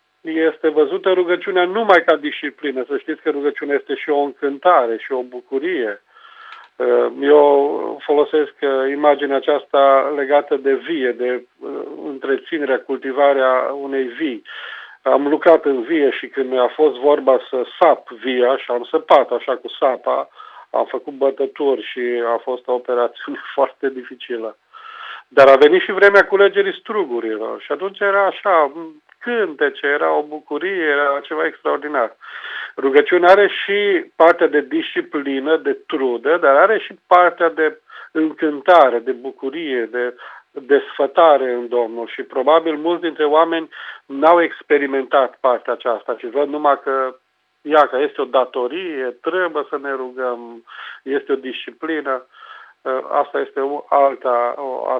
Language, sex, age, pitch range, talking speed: Romanian, male, 40-59, 135-200 Hz, 135 wpm